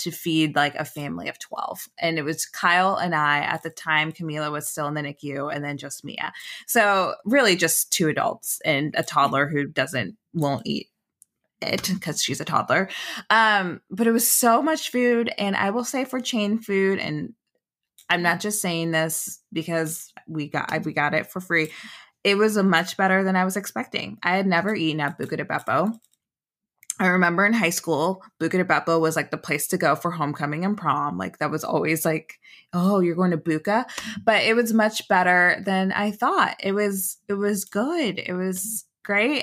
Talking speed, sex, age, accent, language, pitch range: 195 wpm, female, 20-39, American, English, 160-205 Hz